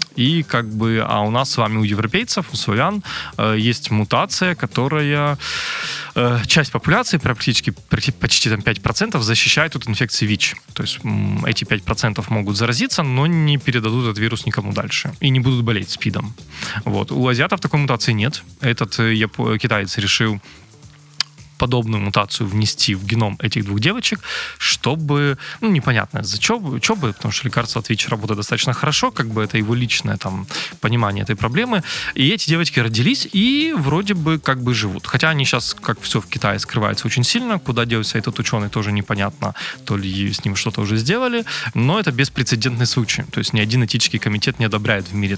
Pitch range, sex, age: 110-140 Hz, male, 20-39